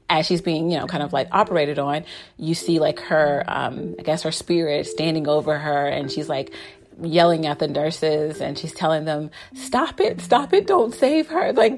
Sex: female